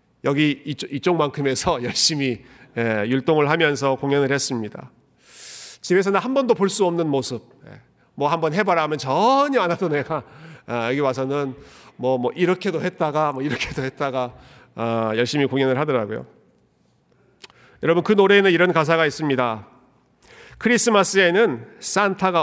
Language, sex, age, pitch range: Korean, male, 40-59, 135-175 Hz